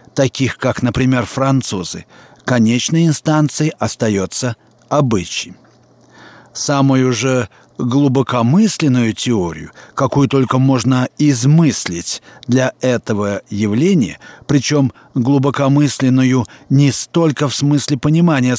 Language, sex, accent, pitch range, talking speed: Russian, male, native, 115-150 Hz, 85 wpm